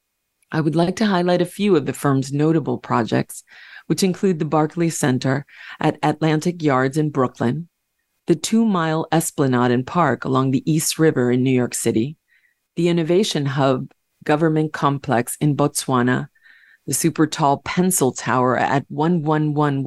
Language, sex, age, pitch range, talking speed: English, female, 30-49, 135-165 Hz, 150 wpm